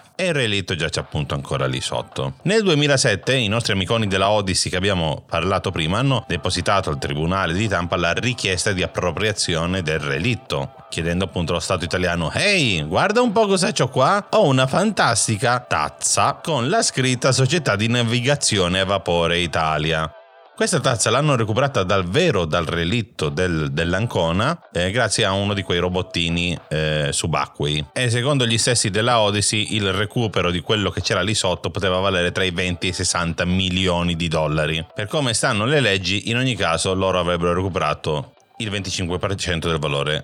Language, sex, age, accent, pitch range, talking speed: Italian, male, 40-59, native, 85-125 Hz, 175 wpm